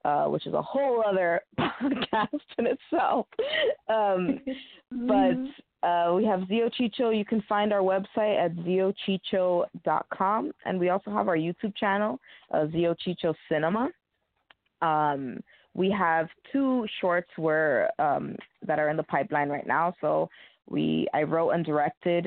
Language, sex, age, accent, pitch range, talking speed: English, female, 20-39, American, 155-200 Hz, 145 wpm